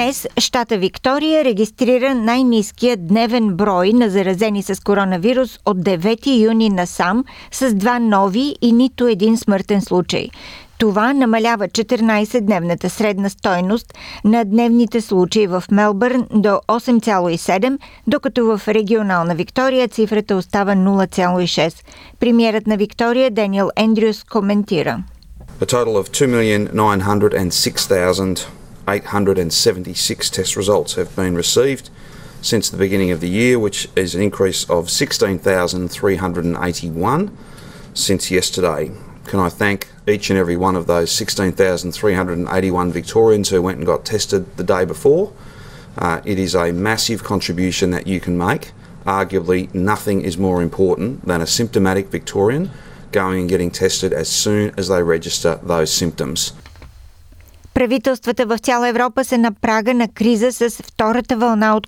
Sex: female